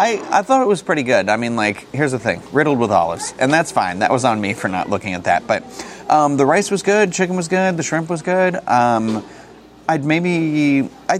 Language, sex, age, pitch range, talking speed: English, male, 30-49, 105-145 Hz, 240 wpm